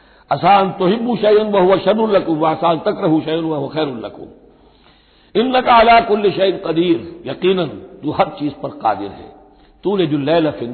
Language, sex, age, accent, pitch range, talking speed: Hindi, male, 60-79, native, 145-195 Hz, 130 wpm